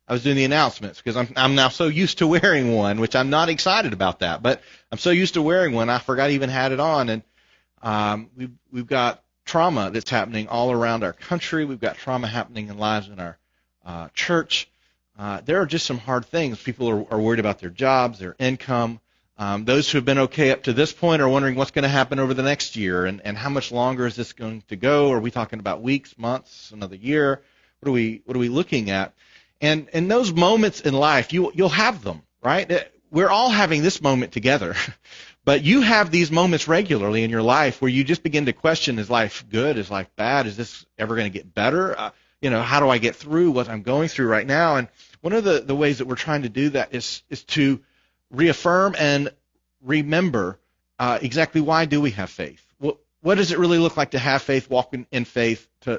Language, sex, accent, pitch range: English, male, American, 115-150 Hz